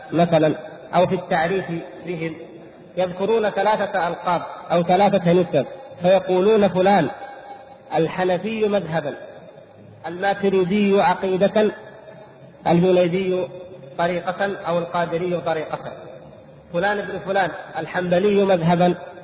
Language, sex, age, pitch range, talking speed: Arabic, male, 50-69, 170-200 Hz, 85 wpm